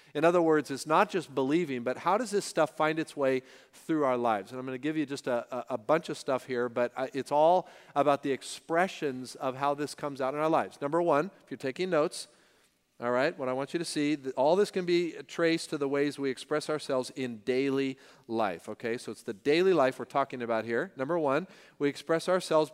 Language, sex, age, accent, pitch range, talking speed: English, male, 40-59, American, 130-170 Hz, 230 wpm